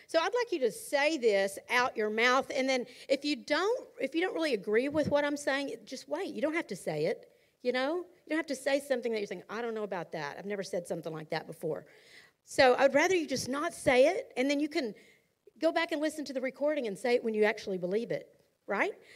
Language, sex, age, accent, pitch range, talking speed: English, female, 50-69, American, 225-320 Hz, 260 wpm